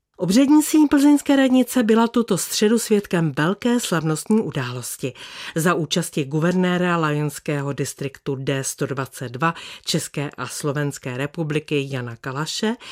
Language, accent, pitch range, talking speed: Czech, native, 145-205 Hz, 105 wpm